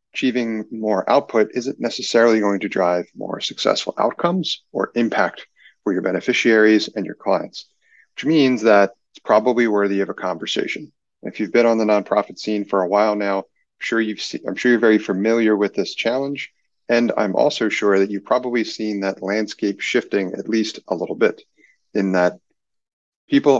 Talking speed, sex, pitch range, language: 180 wpm, male, 100-120 Hz, English